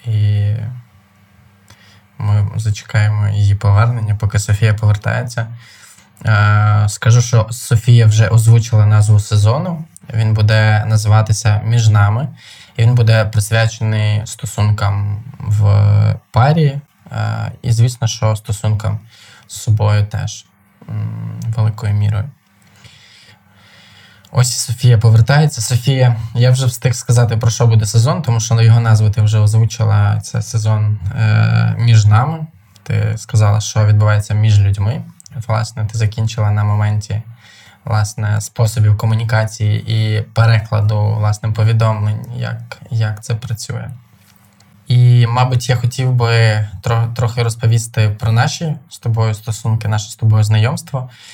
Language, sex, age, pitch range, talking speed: Ukrainian, male, 20-39, 105-120 Hz, 115 wpm